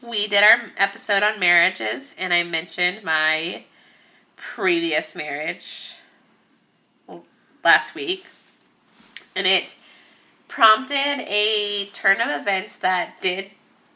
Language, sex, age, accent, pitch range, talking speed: English, female, 20-39, American, 180-230 Hz, 100 wpm